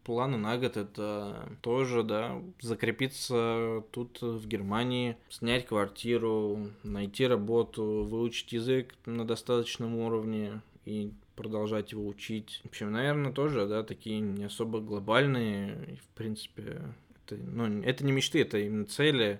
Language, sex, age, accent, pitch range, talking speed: Russian, male, 20-39, native, 105-120 Hz, 130 wpm